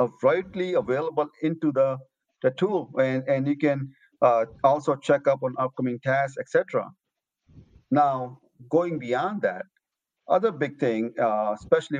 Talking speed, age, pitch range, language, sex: 140 wpm, 50-69, 115-145 Hz, English, male